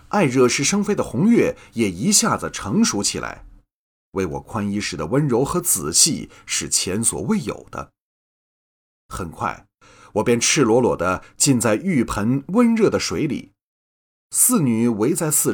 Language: Chinese